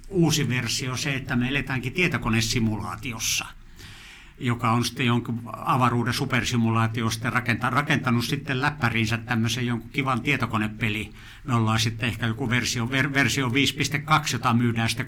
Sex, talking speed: male, 135 wpm